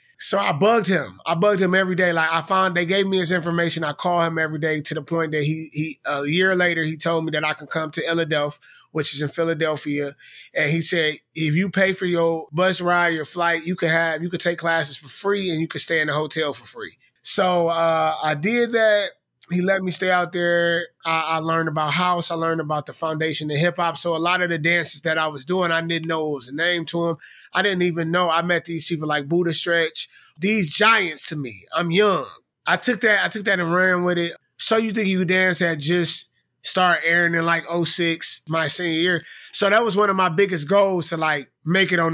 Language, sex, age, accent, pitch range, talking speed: English, male, 20-39, American, 160-185 Hz, 245 wpm